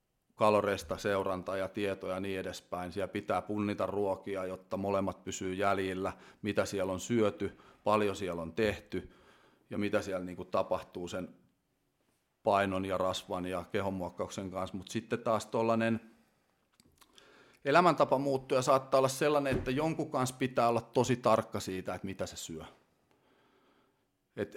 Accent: native